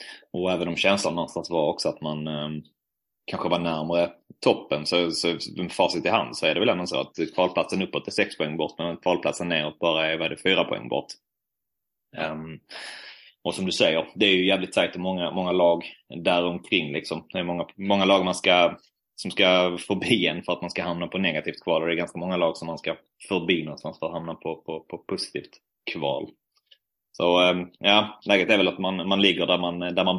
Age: 30-49